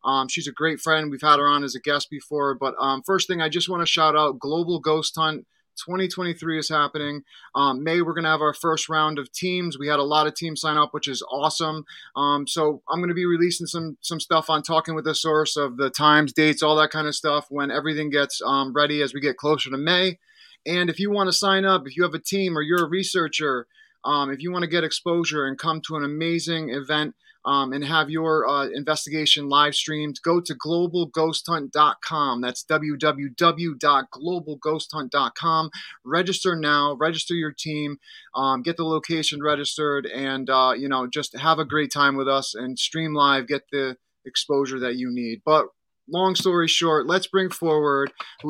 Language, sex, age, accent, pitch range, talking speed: English, male, 30-49, American, 145-170 Hz, 205 wpm